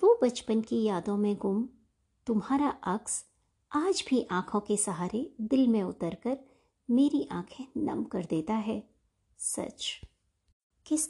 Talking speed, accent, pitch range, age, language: 130 wpm, native, 195-275 Hz, 50-69, Hindi